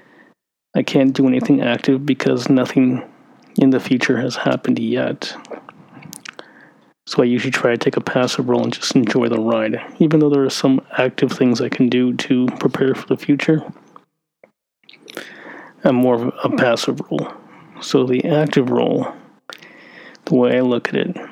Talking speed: 165 wpm